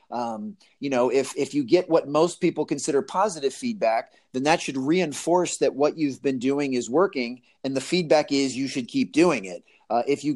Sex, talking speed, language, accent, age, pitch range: male, 210 wpm, English, American, 30-49, 135-165 Hz